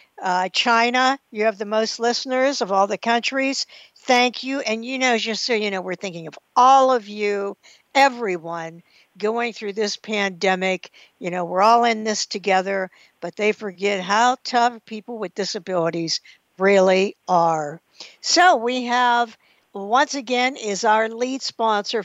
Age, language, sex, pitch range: 60-79, English, female, 195-240 Hz